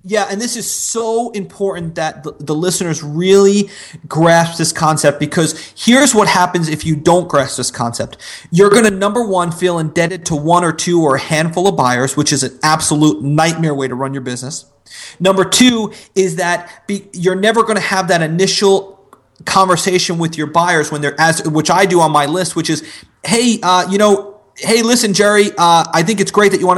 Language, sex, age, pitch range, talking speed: English, male, 30-49, 155-200 Hz, 200 wpm